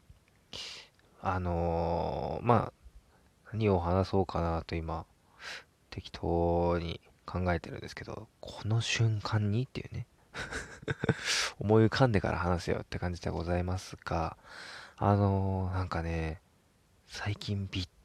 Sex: male